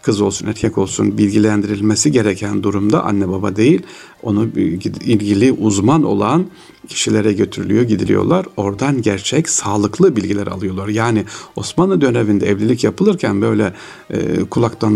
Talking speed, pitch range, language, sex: 120 wpm, 105-130 Hz, Turkish, male